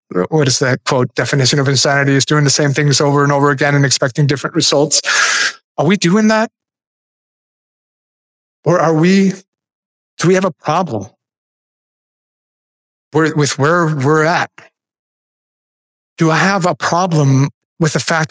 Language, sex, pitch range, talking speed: English, male, 150-195 Hz, 145 wpm